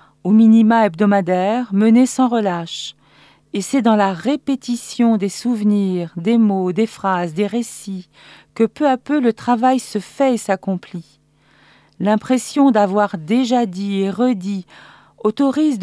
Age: 40-59